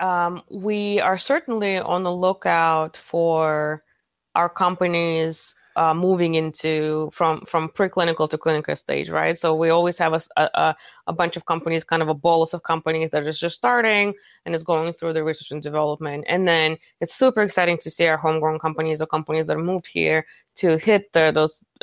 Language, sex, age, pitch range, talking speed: English, female, 20-39, 155-180 Hz, 180 wpm